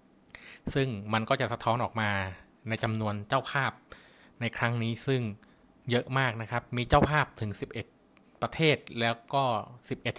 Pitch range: 110-130 Hz